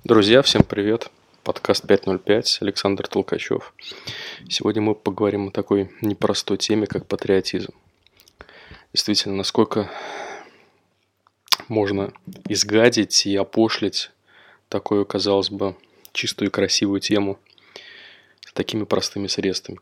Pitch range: 95-105 Hz